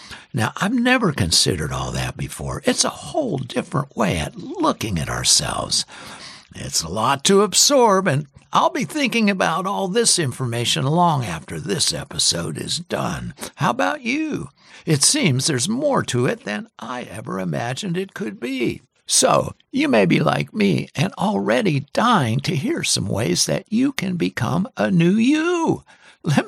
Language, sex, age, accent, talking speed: English, male, 60-79, American, 165 wpm